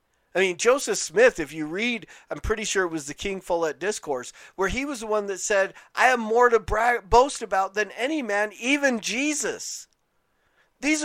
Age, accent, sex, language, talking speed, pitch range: 40-59, American, male, English, 190 wpm, 150-225 Hz